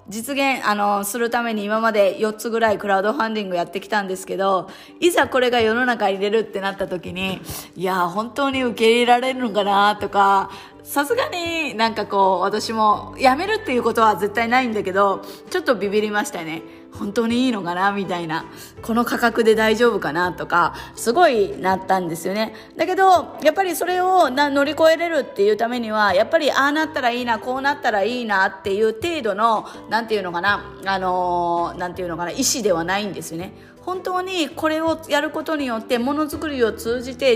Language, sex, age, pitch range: Japanese, female, 20-39, 195-280 Hz